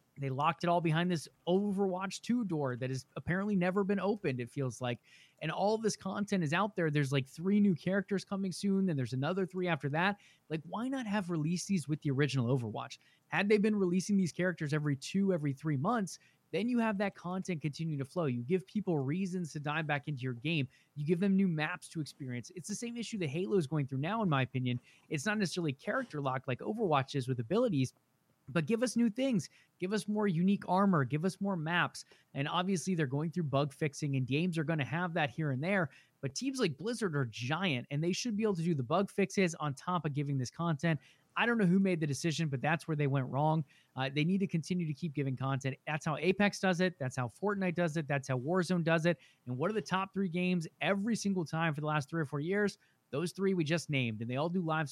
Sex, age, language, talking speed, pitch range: male, 20-39, English, 245 wpm, 145-190 Hz